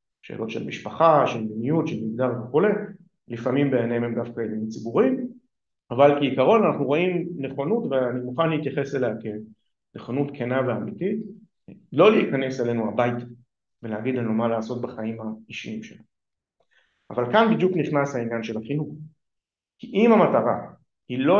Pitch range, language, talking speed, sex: 120-170 Hz, Hebrew, 135 wpm, male